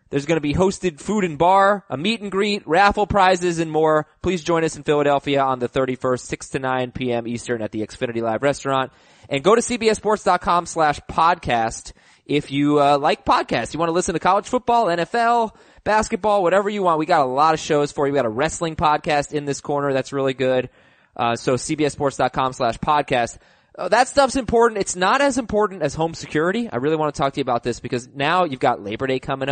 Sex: male